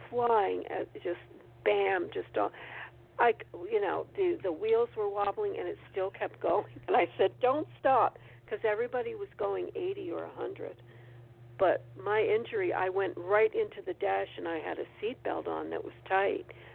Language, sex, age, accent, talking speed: English, female, 50-69, American, 170 wpm